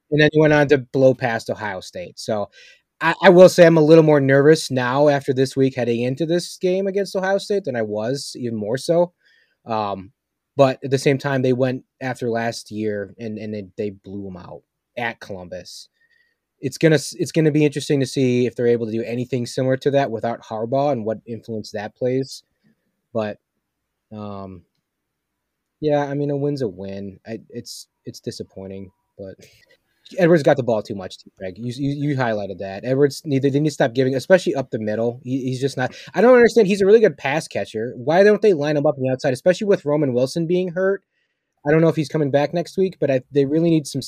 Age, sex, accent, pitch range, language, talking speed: 20-39, male, American, 115-155 Hz, English, 220 wpm